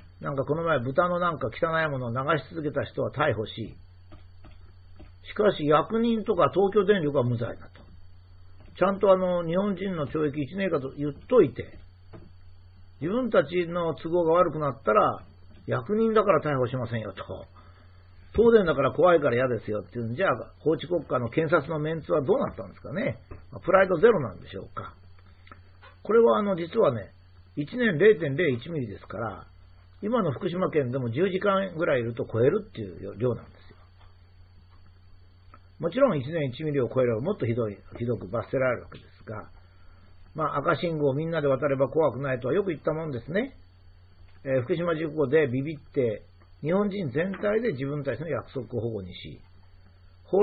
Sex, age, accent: male, 50-69, native